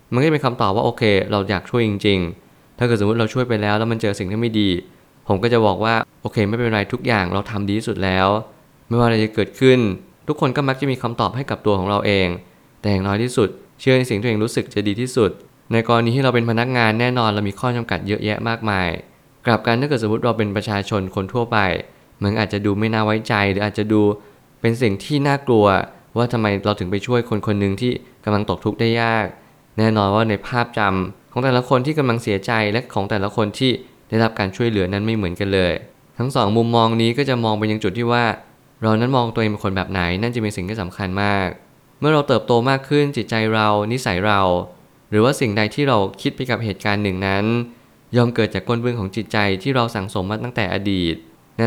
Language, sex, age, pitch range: Thai, male, 20-39, 100-120 Hz